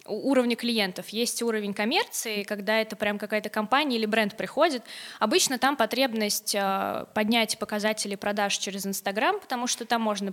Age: 20-39